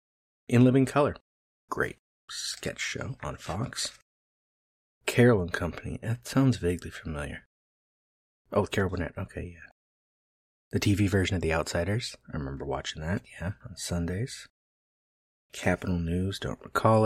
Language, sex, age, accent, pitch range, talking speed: English, male, 30-49, American, 75-100 Hz, 130 wpm